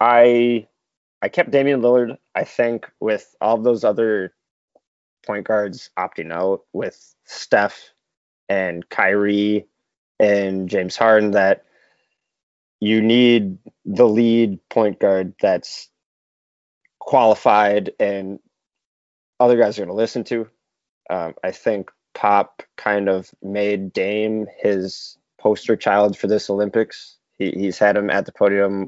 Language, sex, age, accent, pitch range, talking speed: English, male, 20-39, American, 100-115 Hz, 125 wpm